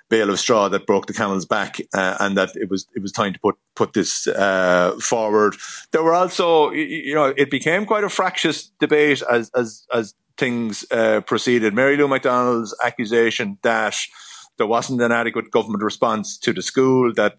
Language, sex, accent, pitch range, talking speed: English, male, Irish, 100-115 Hz, 185 wpm